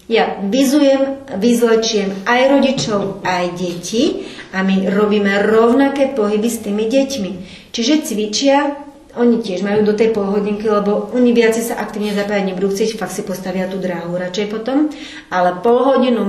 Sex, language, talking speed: female, Slovak, 145 wpm